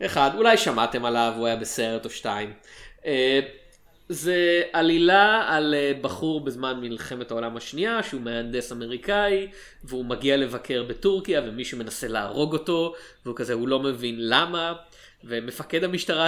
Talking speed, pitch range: 135 wpm, 125-165 Hz